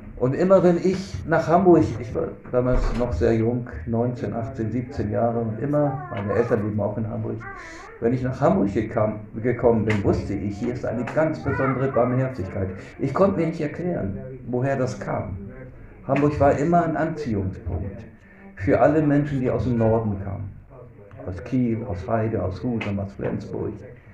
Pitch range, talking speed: 100-130 Hz, 170 wpm